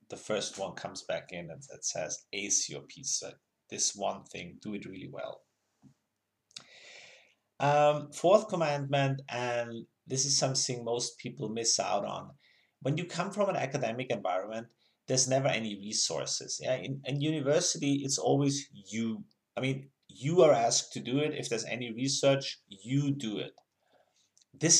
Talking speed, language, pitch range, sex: 155 wpm, English, 120-145 Hz, male